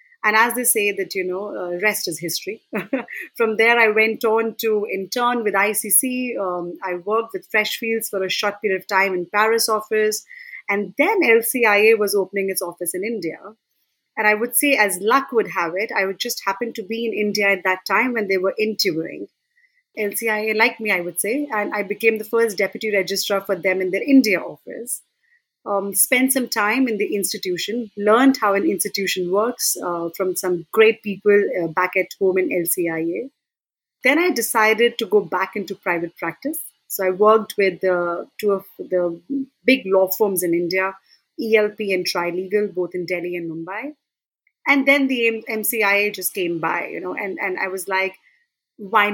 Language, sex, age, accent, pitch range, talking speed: English, female, 30-49, Indian, 190-230 Hz, 185 wpm